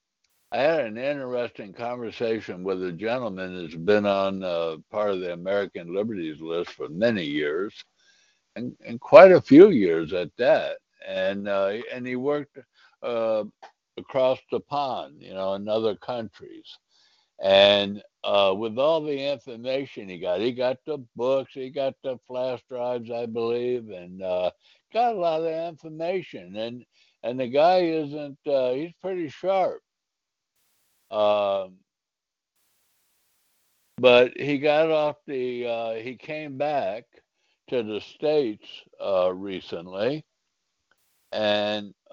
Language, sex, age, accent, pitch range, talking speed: English, male, 60-79, American, 105-150 Hz, 135 wpm